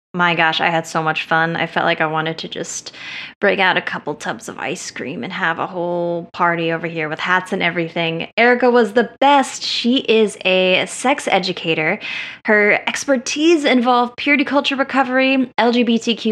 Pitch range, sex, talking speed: 175-245 Hz, female, 180 wpm